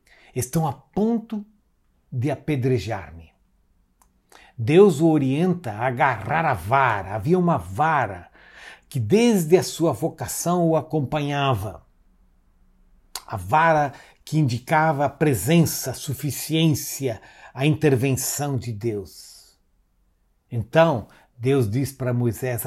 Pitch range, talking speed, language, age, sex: 110-150 Hz, 105 wpm, Portuguese, 60-79, male